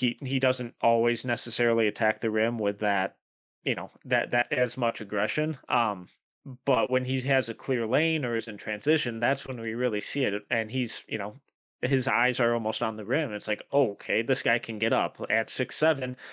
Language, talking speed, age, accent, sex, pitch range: English, 210 wpm, 30-49, American, male, 105-125 Hz